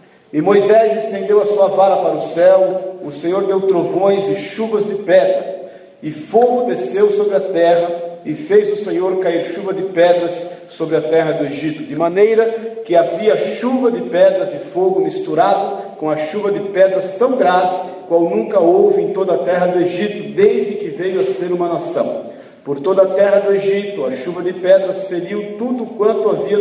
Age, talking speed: 50-69, 185 wpm